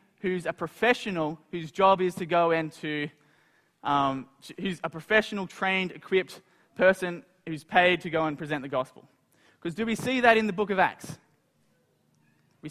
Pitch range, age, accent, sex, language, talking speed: 155-205 Hz, 20-39, Australian, male, English, 165 wpm